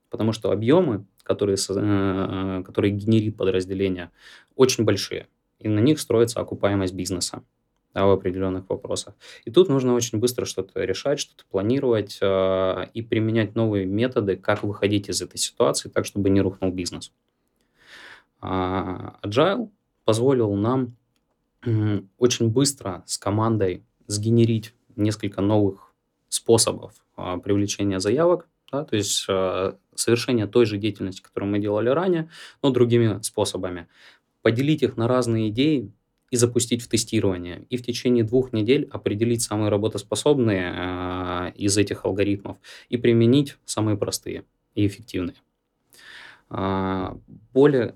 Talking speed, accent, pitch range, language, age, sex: 125 wpm, native, 95-120 Hz, Russian, 20-39, male